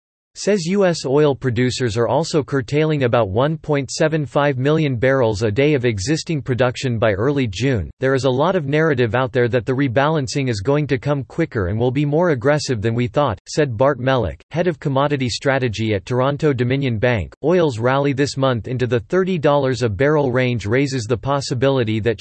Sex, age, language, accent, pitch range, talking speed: male, 40-59, English, American, 120-150 Hz, 185 wpm